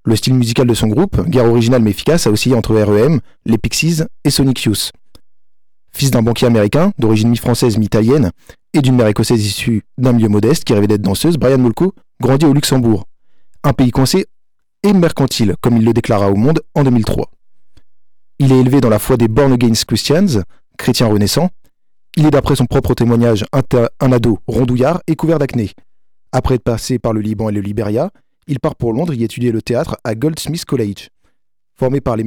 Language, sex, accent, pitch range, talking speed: French, male, French, 115-145 Hz, 190 wpm